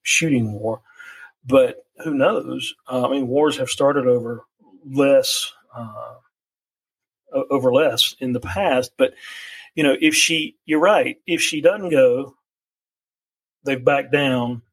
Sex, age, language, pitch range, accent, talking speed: male, 40-59, English, 125-165 Hz, American, 130 wpm